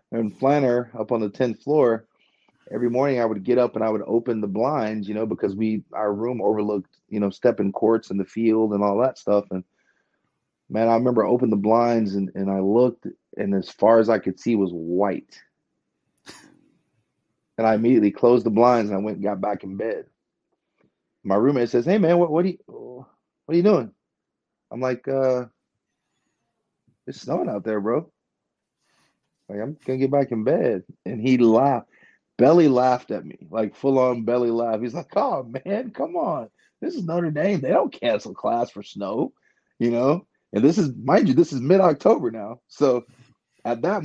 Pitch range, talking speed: 105-135 Hz, 195 wpm